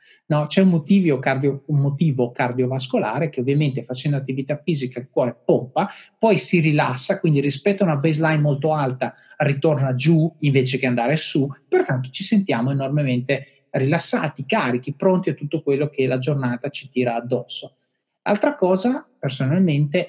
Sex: male